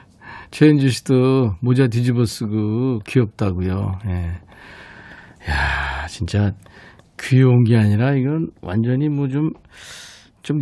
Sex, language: male, Korean